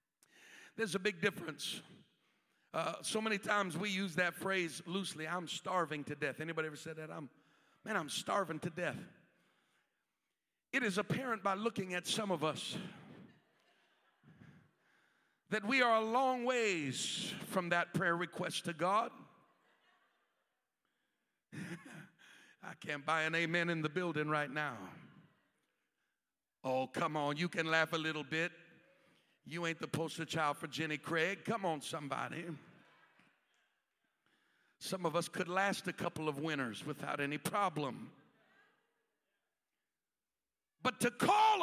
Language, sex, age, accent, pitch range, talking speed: English, male, 50-69, American, 170-235 Hz, 135 wpm